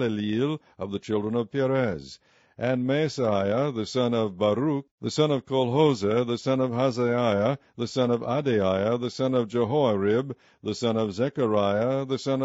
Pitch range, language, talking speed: 110-135 Hz, English, 160 wpm